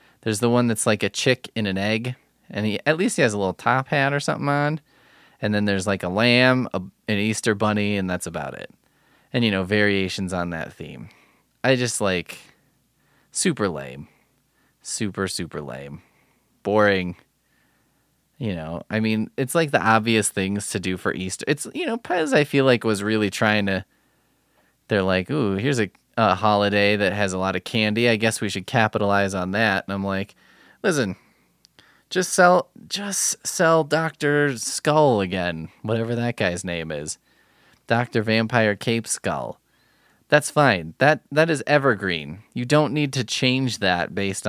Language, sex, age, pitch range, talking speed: English, male, 20-39, 95-130 Hz, 175 wpm